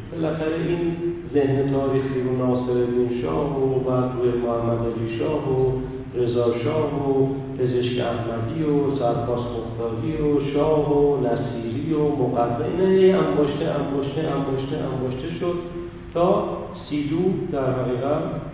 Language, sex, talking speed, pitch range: Persian, male, 115 wpm, 125-155 Hz